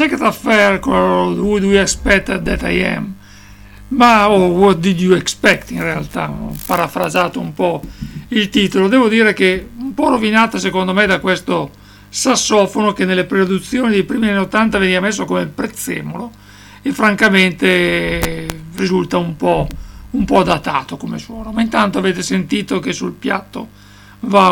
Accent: Italian